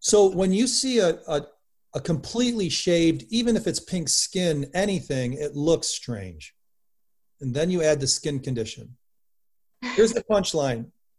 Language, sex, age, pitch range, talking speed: English, male, 40-59, 135-190 Hz, 150 wpm